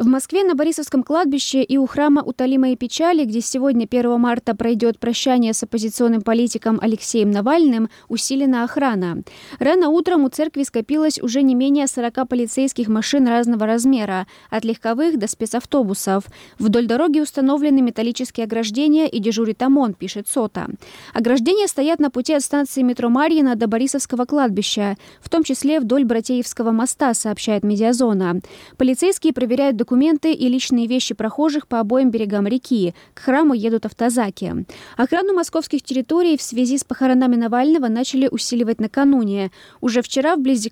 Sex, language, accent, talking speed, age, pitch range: female, Russian, native, 145 wpm, 20-39, 230-275 Hz